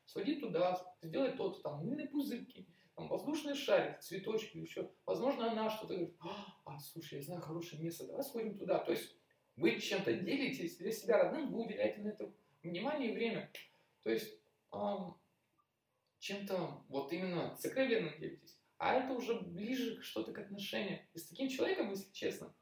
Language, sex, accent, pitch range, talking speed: Russian, male, native, 170-240 Hz, 160 wpm